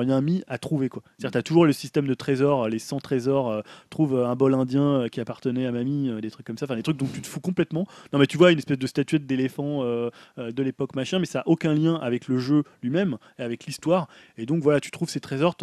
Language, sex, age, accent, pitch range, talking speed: French, male, 20-39, French, 125-155 Hz, 290 wpm